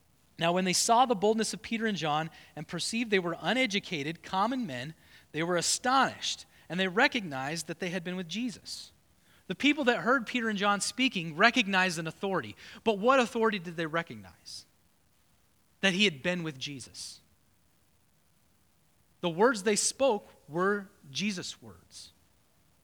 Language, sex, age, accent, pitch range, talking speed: English, male, 30-49, American, 155-225 Hz, 155 wpm